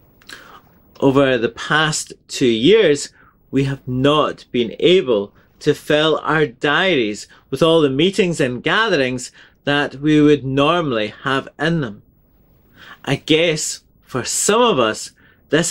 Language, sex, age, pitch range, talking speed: English, male, 30-49, 135-180 Hz, 130 wpm